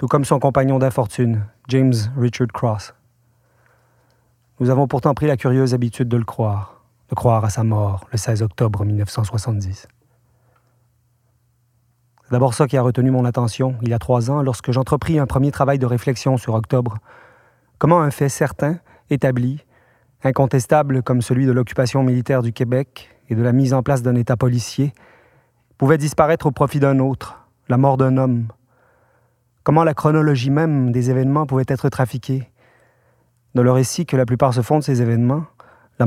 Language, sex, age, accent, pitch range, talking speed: French, male, 30-49, French, 120-130 Hz, 170 wpm